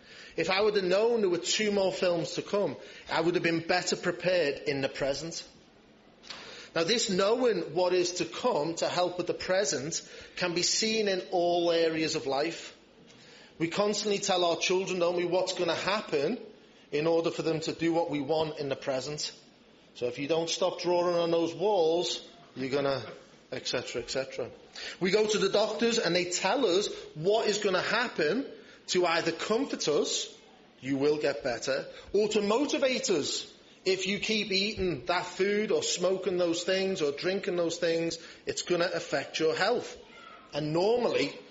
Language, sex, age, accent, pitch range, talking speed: English, male, 30-49, British, 160-205 Hz, 180 wpm